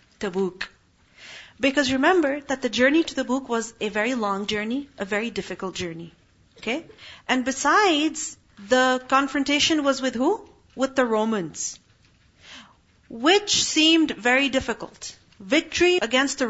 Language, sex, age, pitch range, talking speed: English, female, 40-59, 215-290 Hz, 135 wpm